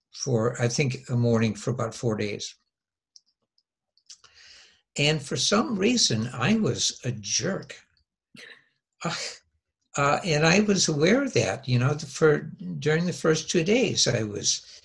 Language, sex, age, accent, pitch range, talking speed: English, male, 60-79, American, 120-165 Hz, 140 wpm